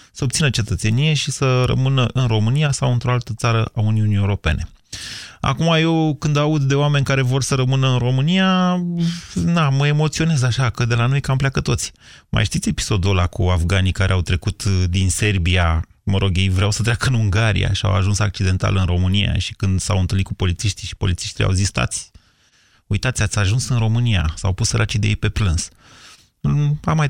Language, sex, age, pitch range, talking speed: Romanian, male, 30-49, 95-125 Hz, 190 wpm